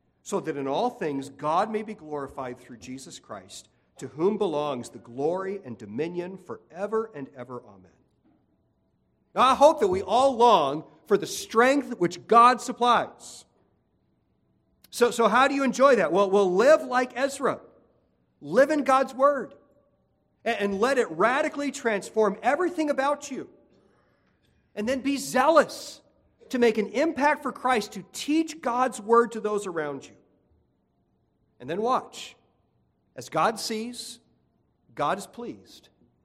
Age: 40-59